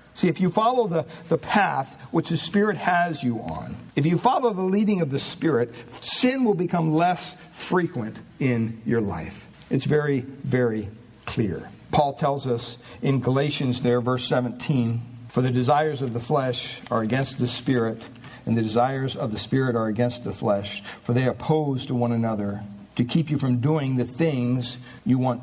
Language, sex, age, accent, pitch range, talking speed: English, male, 60-79, American, 120-175 Hz, 180 wpm